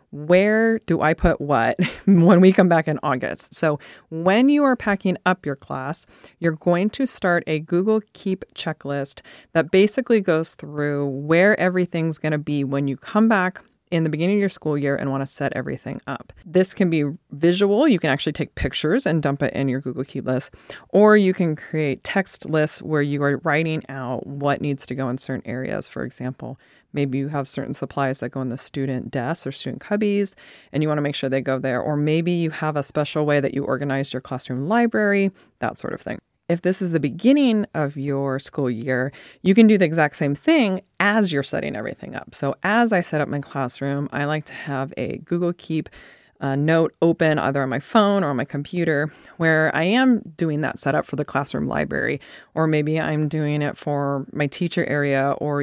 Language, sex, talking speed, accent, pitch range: English, female, 210 wpm, American, 140-180 Hz